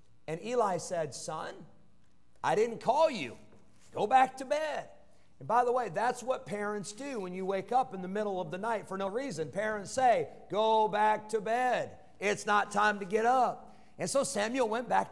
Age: 50-69